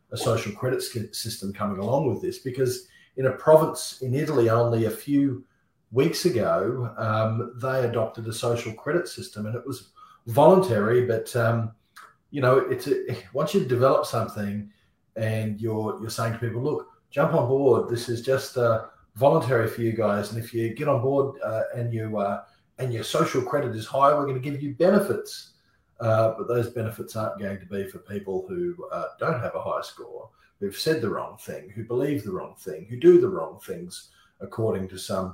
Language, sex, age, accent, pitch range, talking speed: English, male, 40-59, Australian, 110-135 Hz, 195 wpm